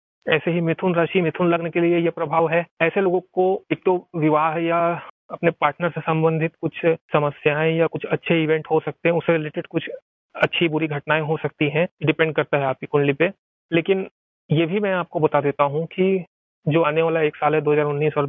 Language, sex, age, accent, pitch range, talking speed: Hindi, male, 30-49, native, 155-175 Hz, 205 wpm